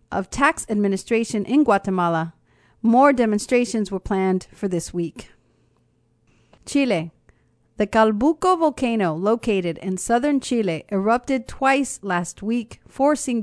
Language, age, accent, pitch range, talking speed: English, 40-59, American, 200-245 Hz, 110 wpm